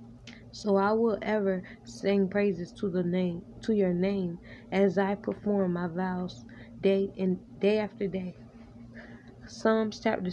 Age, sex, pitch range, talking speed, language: 20-39, female, 175-205 Hz, 140 wpm, English